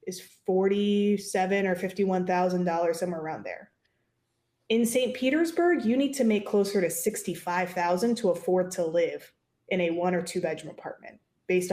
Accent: American